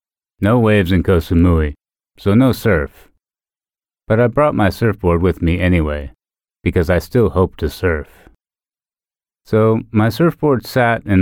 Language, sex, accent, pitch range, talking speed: Italian, male, American, 80-110 Hz, 140 wpm